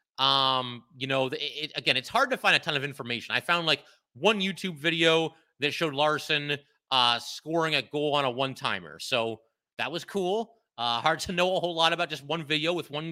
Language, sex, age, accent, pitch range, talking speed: English, male, 30-49, American, 140-175 Hz, 215 wpm